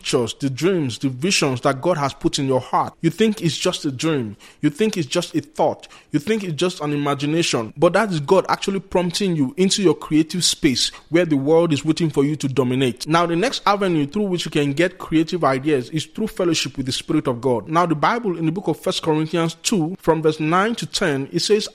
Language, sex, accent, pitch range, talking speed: English, male, Nigerian, 140-175 Hz, 235 wpm